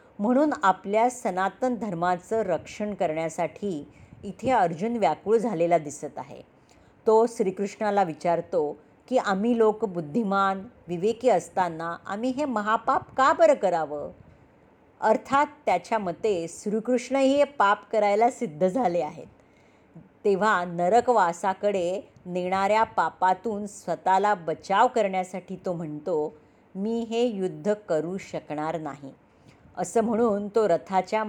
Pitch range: 180-225 Hz